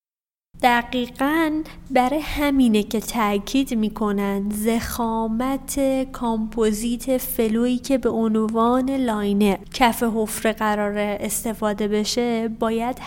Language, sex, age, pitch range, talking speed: Persian, female, 20-39, 210-255 Hz, 85 wpm